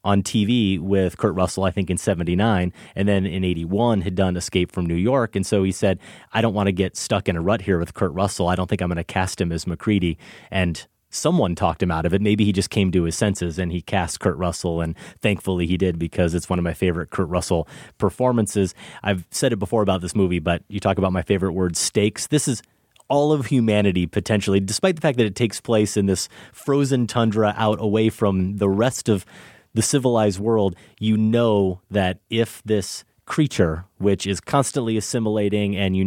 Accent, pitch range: American, 90-105 Hz